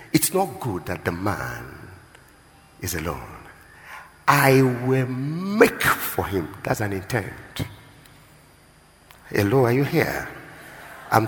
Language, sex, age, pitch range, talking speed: English, male, 50-69, 110-150 Hz, 110 wpm